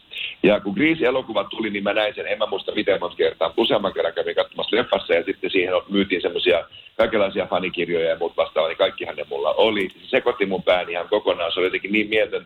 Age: 50-69